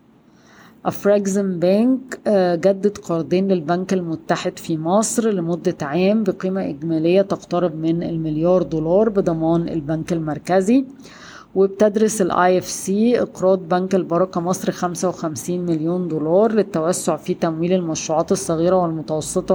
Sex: female